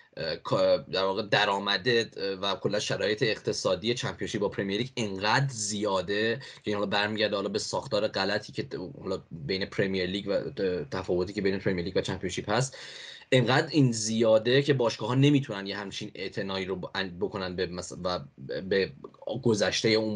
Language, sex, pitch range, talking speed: English, male, 95-125 Hz, 150 wpm